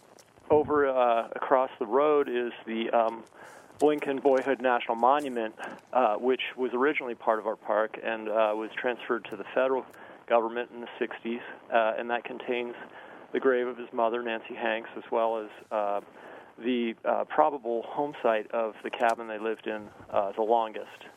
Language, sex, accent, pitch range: English, male, American, 115-135 Hz